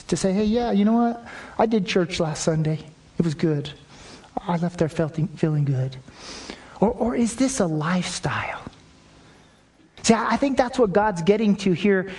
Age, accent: 40-59, American